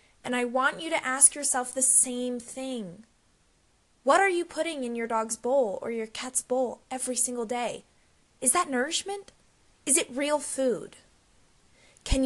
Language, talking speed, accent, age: English, 160 wpm, American, 20-39